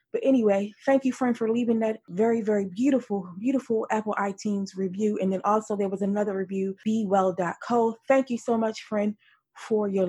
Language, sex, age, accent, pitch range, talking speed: English, female, 20-39, American, 210-280 Hz, 180 wpm